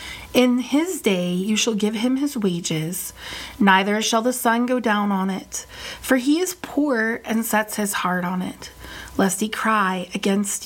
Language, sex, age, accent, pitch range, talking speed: English, female, 30-49, American, 190-230 Hz, 175 wpm